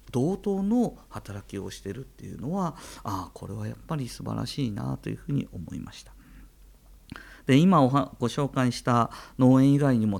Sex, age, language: male, 50-69, Japanese